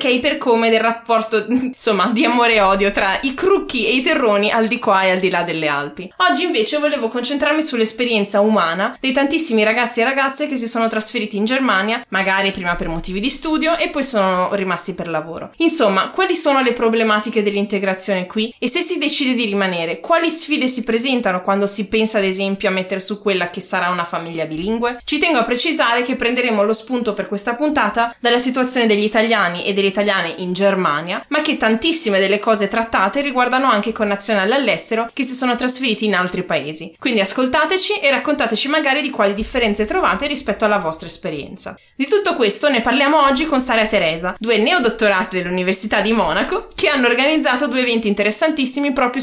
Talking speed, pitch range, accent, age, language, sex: 190 wpm, 200-270 Hz, native, 20-39, Italian, female